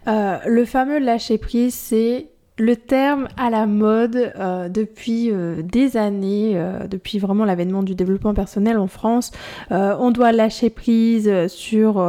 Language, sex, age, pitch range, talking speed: French, female, 20-39, 205-240 Hz, 155 wpm